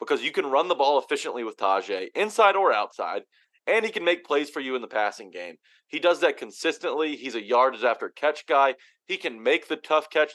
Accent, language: American, English